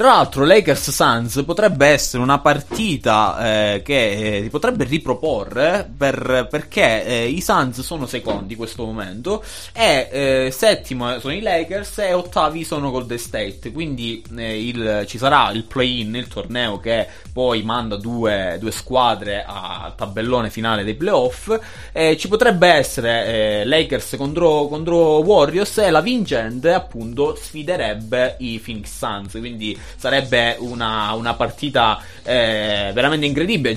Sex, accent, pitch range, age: male, native, 110-145 Hz, 20-39